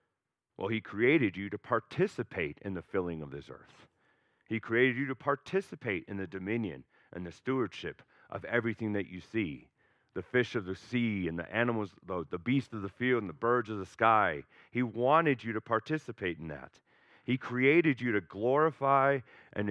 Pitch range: 105-135 Hz